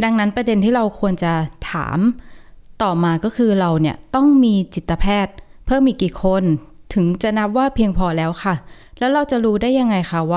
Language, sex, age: Thai, female, 20-39